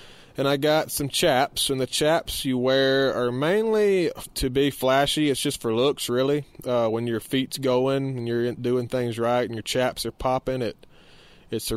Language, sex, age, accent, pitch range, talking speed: English, male, 20-39, American, 110-130 Hz, 195 wpm